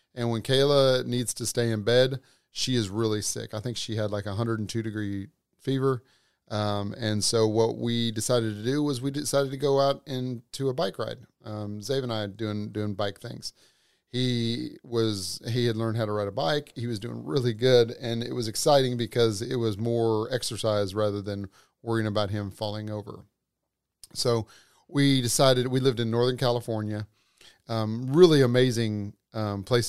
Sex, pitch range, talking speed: male, 110-130 Hz, 185 wpm